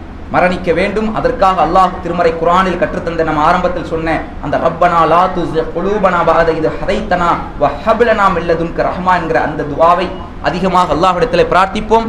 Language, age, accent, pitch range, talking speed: English, 30-49, Indian, 165-230 Hz, 130 wpm